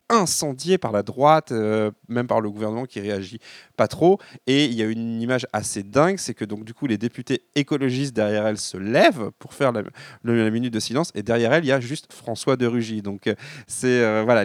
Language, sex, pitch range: French, male, 110-140 Hz